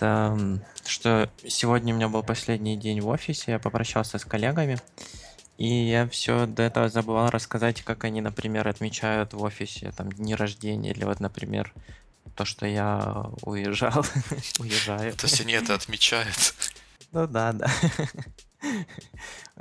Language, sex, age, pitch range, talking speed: Russian, male, 20-39, 110-125 Hz, 135 wpm